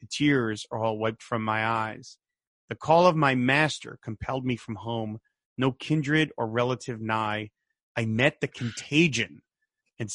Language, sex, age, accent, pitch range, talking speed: English, male, 30-49, American, 115-145 Hz, 160 wpm